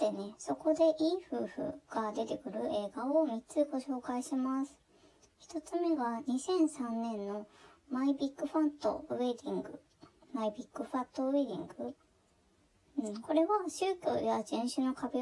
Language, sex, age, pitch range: Japanese, male, 20-39, 215-310 Hz